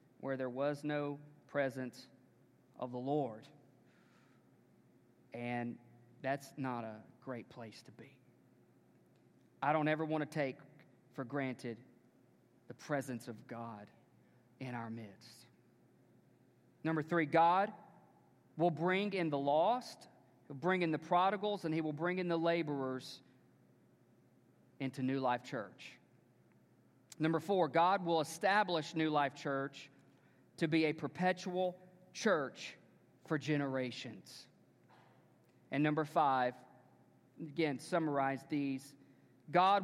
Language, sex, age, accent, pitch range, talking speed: English, male, 40-59, American, 130-170 Hz, 115 wpm